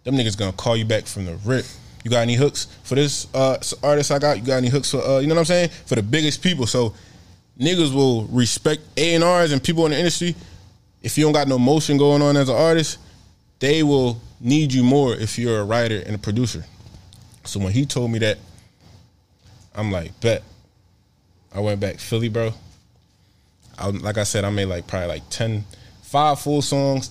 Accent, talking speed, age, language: American, 210 wpm, 20-39, English